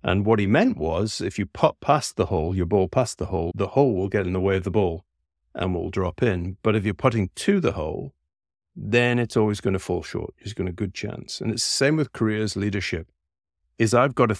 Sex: male